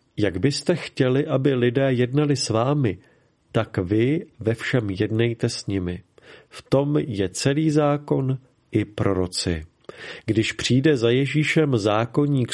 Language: Czech